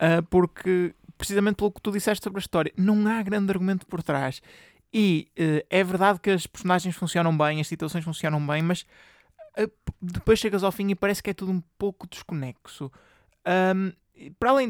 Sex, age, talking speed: male, 20-39, 170 wpm